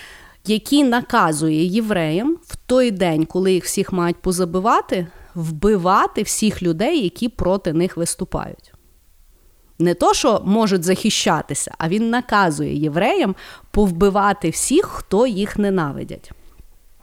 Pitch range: 185-280 Hz